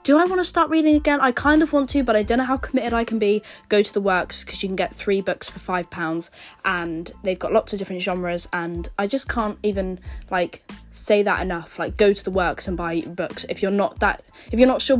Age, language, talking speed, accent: 10-29, English, 265 wpm, British